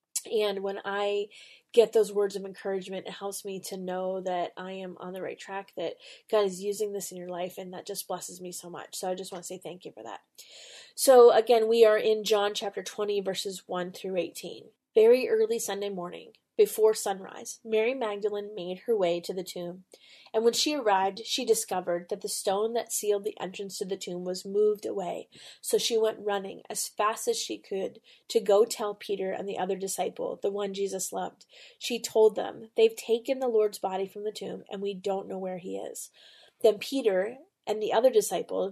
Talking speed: 210 wpm